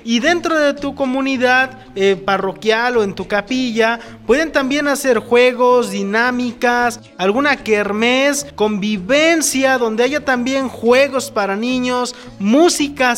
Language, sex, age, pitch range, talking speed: Spanish, male, 30-49, 210-270 Hz, 120 wpm